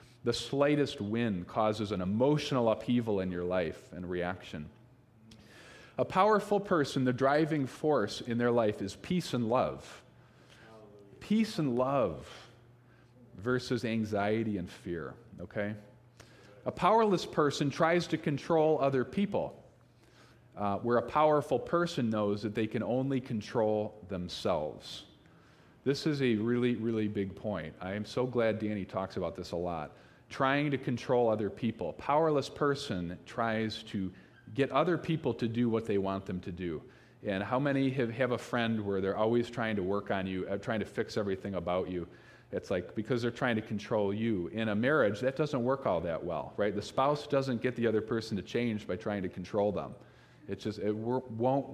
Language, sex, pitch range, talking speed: English, male, 105-130 Hz, 170 wpm